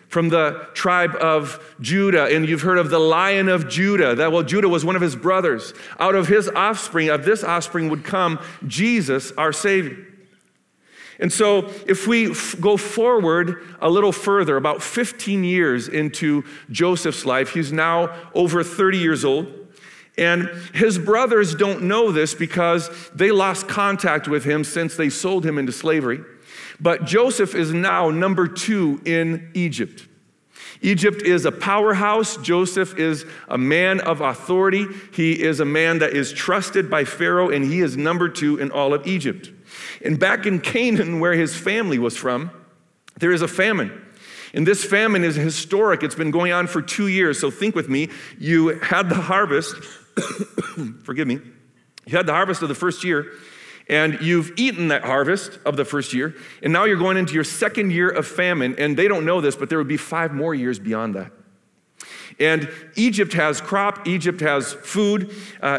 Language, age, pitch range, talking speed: English, 40-59, 155-195 Hz, 175 wpm